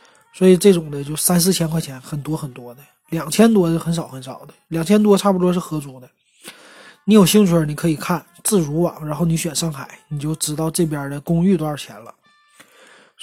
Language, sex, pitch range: Chinese, male, 150-200 Hz